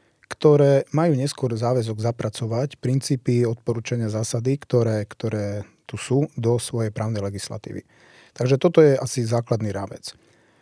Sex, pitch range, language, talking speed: male, 110-135 Hz, Slovak, 125 wpm